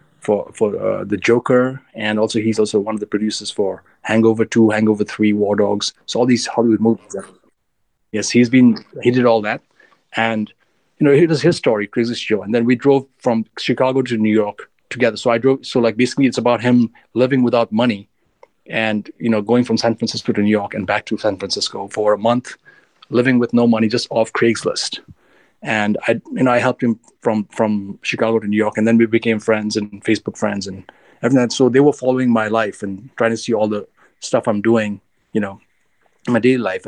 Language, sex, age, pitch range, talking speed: English, male, 30-49, 105-120 Hz, 220 wpm